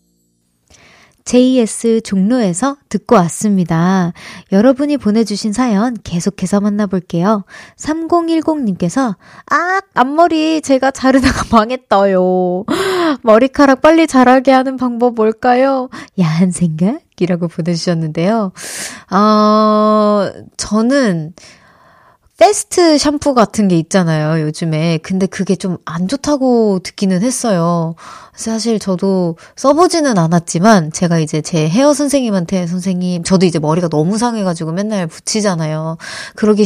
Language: Korean